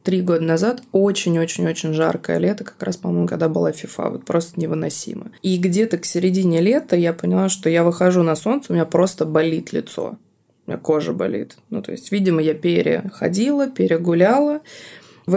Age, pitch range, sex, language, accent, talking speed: 20-39, 160-200 Hz, female, Russian, native, 170 wpm